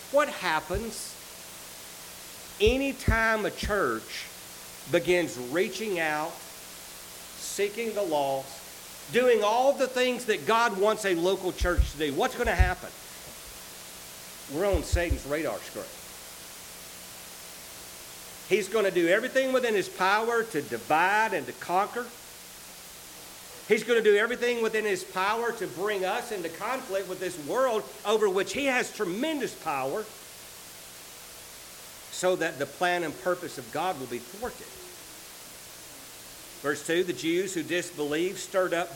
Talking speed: 130 wpm